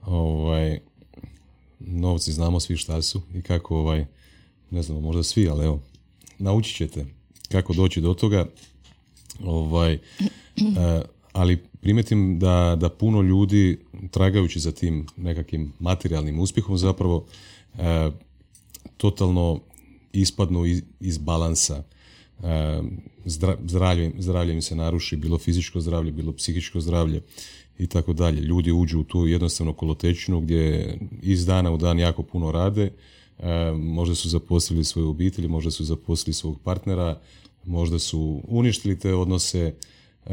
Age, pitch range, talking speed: 30-49, 80-95 Hz, 120 wpm